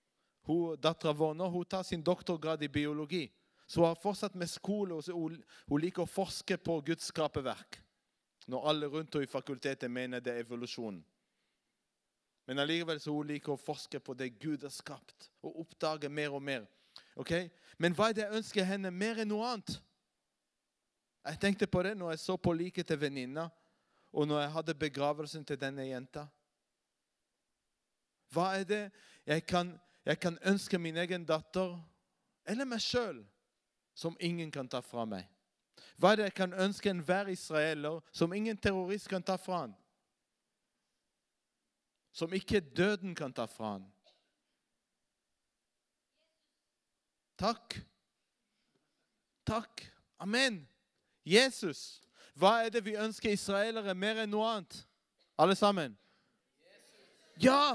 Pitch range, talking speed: 150-195 Hz, 140 wpm